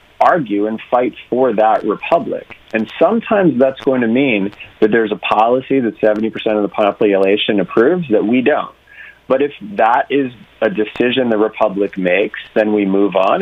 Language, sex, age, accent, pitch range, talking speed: English, male, 30-49, American, 100-130 Hz, 170 wpm